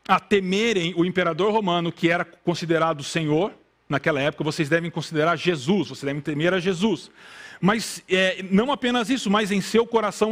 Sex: male